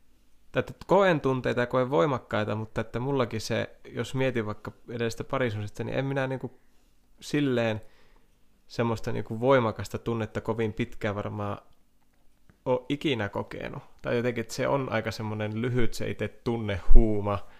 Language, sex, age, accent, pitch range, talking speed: Finnish, male, 20-39, native, 105-120 Hz, 135 wpm